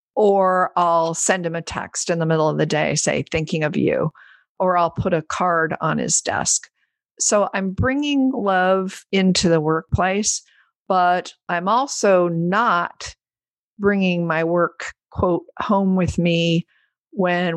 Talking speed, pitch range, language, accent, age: 145 wpm, 165-200 Hz, English, American, 50-69